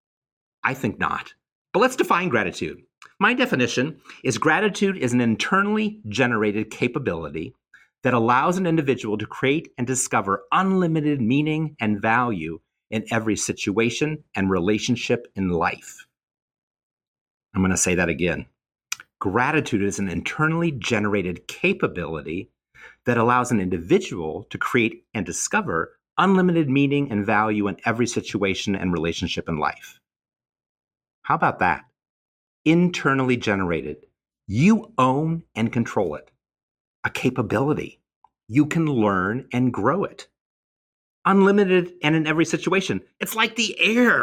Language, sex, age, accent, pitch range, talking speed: English, male, 50-69, American, 105-165 Hz, 125 wpm